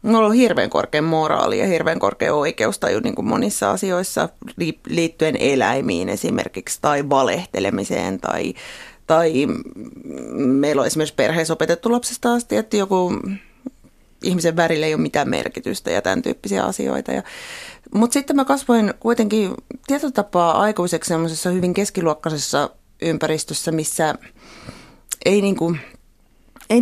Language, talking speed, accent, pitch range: Finnish, 130 wpm, native, 160-215 Hz